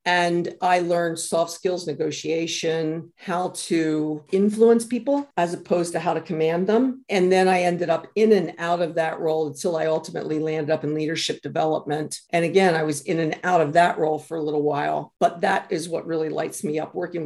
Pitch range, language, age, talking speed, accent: 155-175 Hz, English, 50-69, 205 wpm, American